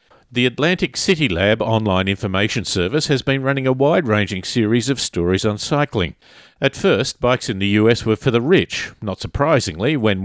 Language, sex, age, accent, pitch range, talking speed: English, male, 50-69, Australian, 105-140 Hz, 175 wpm